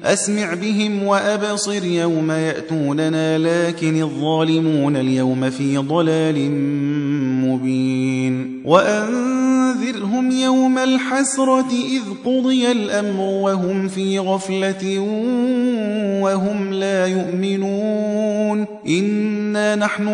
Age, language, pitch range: 30-49, Persian, 155-205 Hz